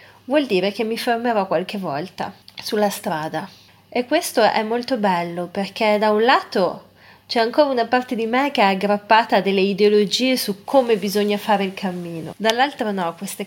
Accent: native